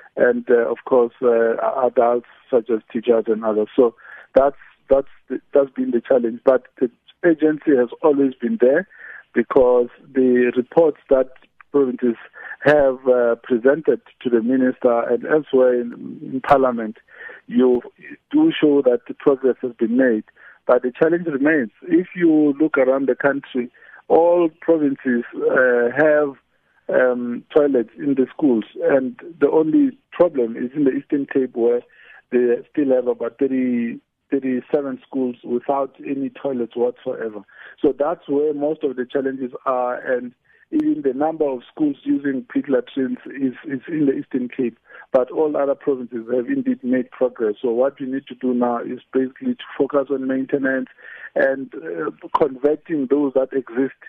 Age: 50-69